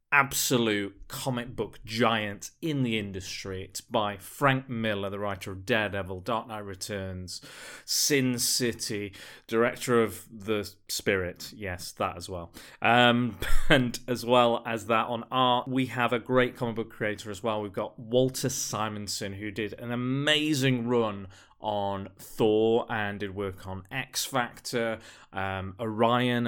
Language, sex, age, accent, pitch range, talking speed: English, male, 30-49, British, 100-125 Hz, 140 wpm